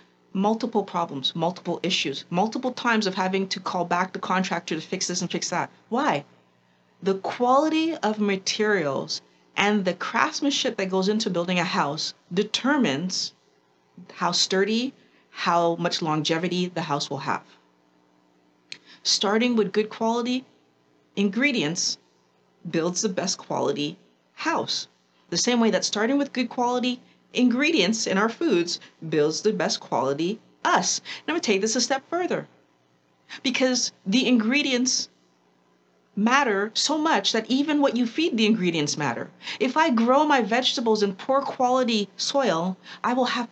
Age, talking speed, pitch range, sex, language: 40-59, 140 wpm, 160-245 Hz, female, English